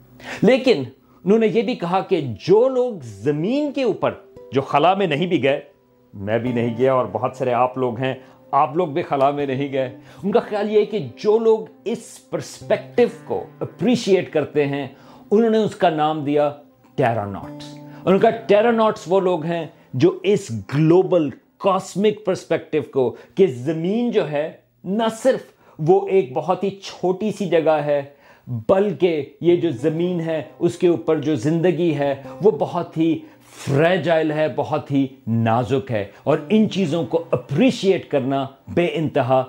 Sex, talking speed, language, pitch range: male, 165 wpm, Urdu, 135-195 Hz